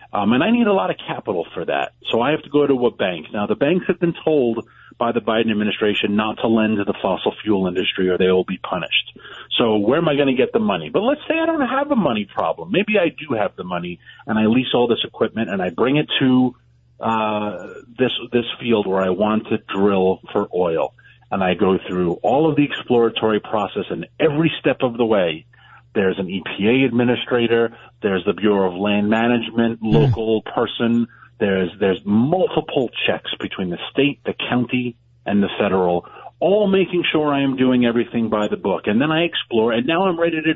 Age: 40-59